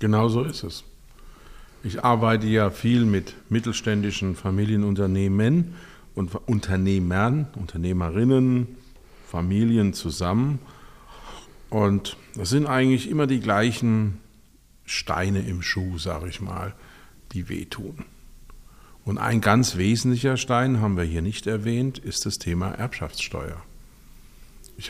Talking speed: 110 wpm